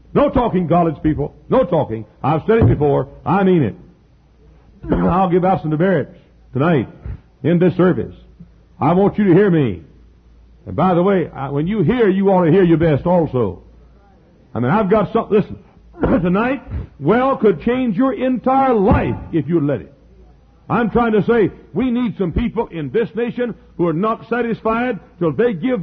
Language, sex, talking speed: English, male, 180 wpm